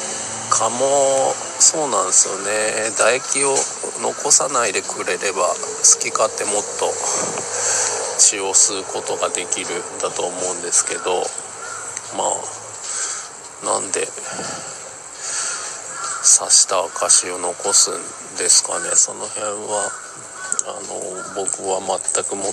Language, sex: Japanese, male